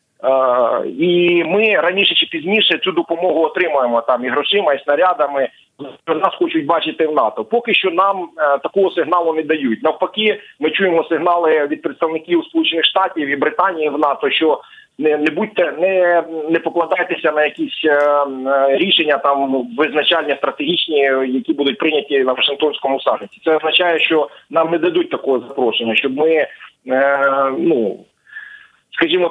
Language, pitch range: Ukrainian, 145-180 Hz